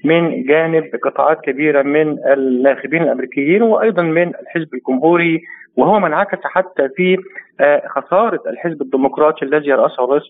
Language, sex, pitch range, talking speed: Arabic, male, 150-190 Hz, 120 wpm